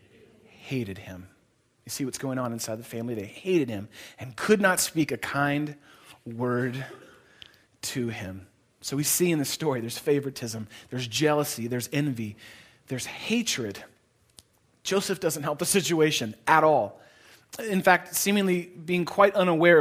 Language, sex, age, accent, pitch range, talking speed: English, male, 30-49, American, 130-195 Hz, 150 wpm